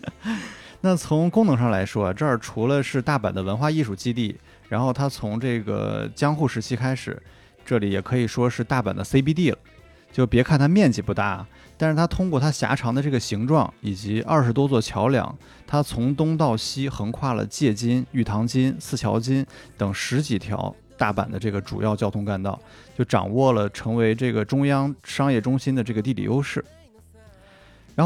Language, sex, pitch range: Chinese, male, 105-135 Hz